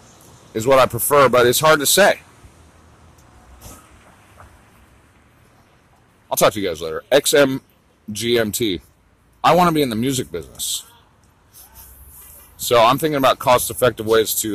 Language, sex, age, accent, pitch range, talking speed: English, male, 40-59, American, 95-135 Hz, 130 wpm